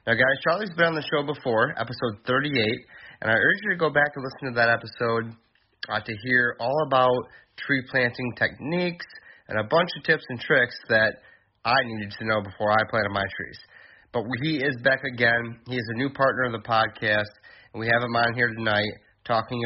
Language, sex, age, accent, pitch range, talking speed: English, male, 30-49, American, 105-125 Hz, 210 wpm